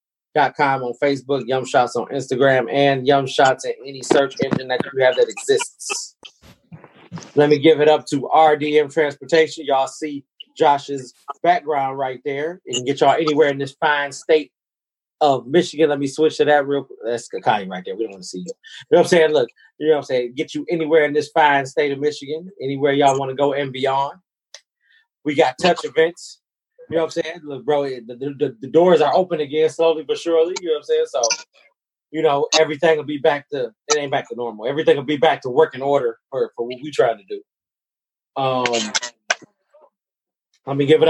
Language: English